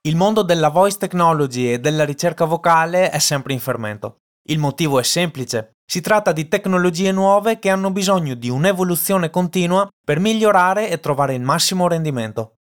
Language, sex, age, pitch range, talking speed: Italian, male, 20-39, 150-205 Hz, 165 wpm